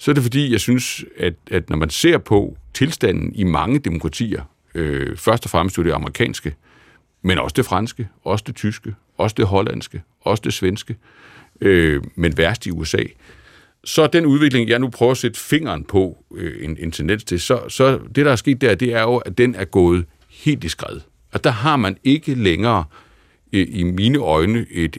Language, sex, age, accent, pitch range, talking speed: Danish, male, 60-79, native, 85-120 Hz, 195 wpm